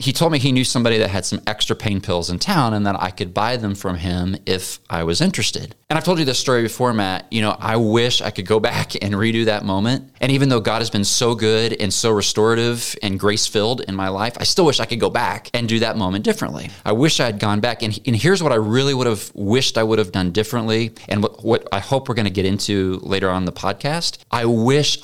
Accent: American